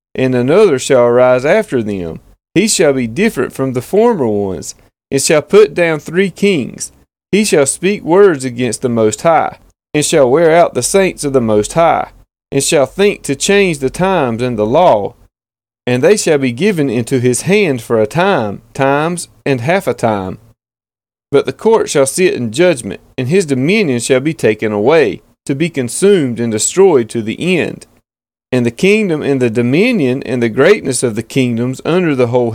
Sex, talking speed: male, 185 wpm